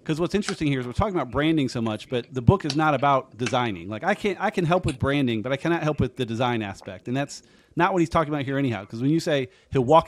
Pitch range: 120-145 Hz